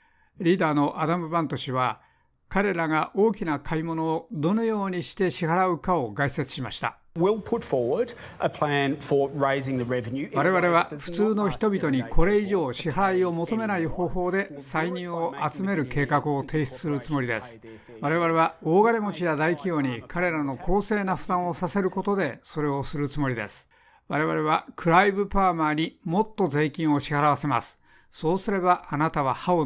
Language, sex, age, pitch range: Japanese, male, 60-79, 140-180 Hz